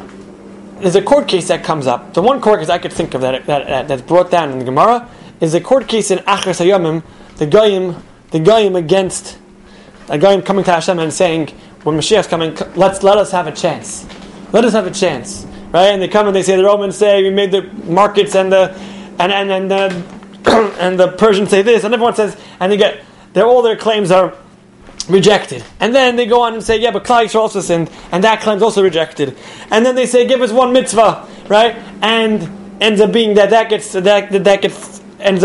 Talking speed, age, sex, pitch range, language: 225 wpm, 20-39, male, 180-220 Hz, English